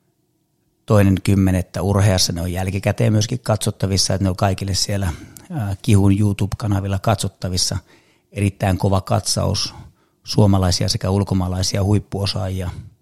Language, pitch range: Finnish, 95-110 Hz